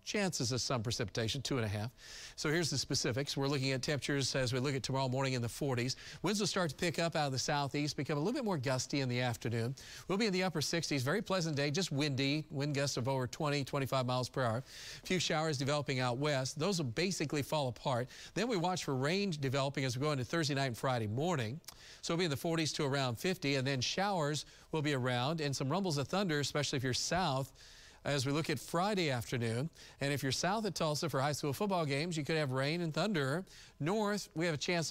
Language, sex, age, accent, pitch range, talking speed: English, male, 40-59, American, 130-160 Hz, 245 wpm